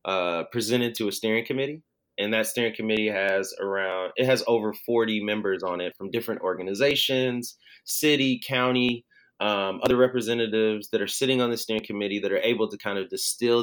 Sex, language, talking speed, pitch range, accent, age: male, English, 180 wpm, 105-130 Hz, American, 20-39